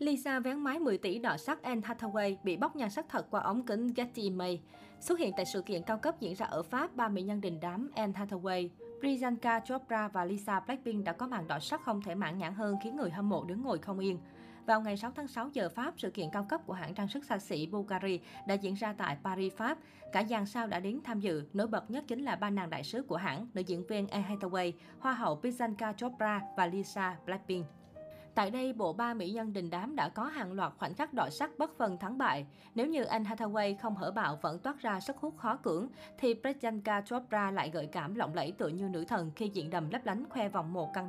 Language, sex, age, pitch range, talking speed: Vietnamese, female, 20-39, 190-245 Hz, 245 wpm